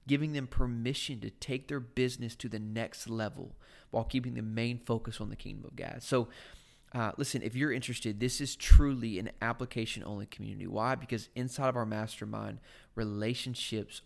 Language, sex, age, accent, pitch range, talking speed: English, male, 20-39, American, 110-130 Hz, 170 wpm